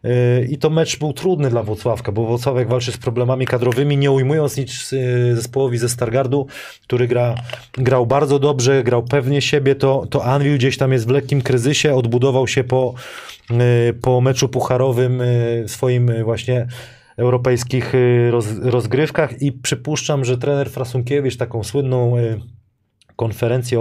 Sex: male